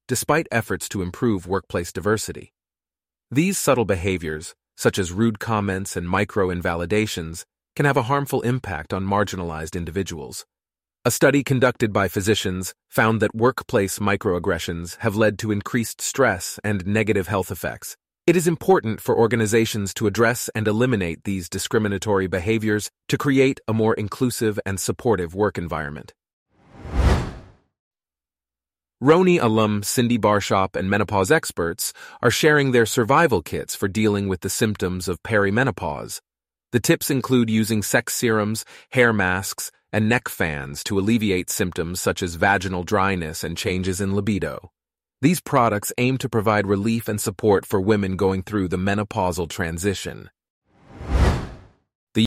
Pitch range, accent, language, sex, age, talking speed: 95-120 Hz, American, English, male, 30-49, 135 wpm